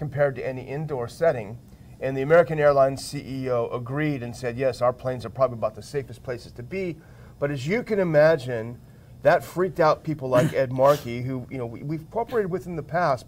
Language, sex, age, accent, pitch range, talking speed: English, male, 40-59, American, 120-155 Hz, 205 wpm